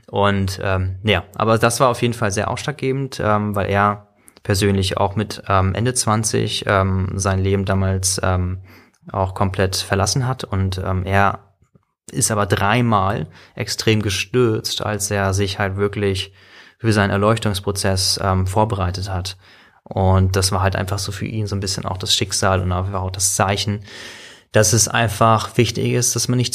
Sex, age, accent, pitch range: male, 20-39, German, 95-110 Hz